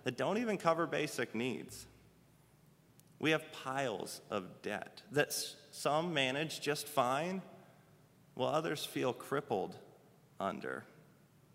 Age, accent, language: 30-49, American, English